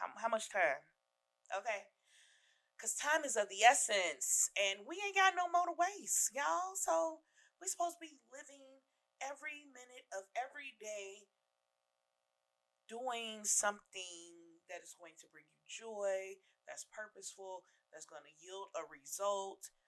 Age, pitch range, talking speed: 30-49, 175-270 Hz, 140 wpm